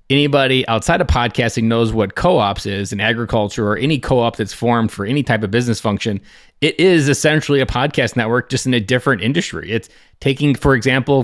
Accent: American